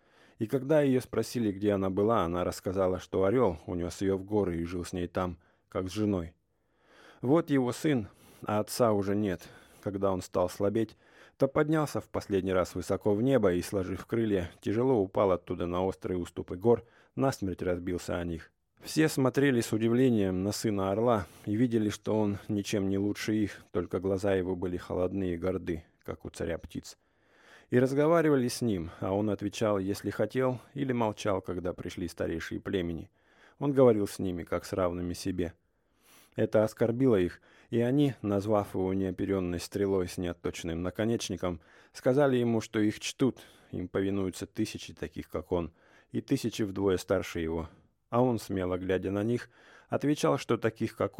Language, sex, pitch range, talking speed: English, male, 90-115 Hz, 170 wpm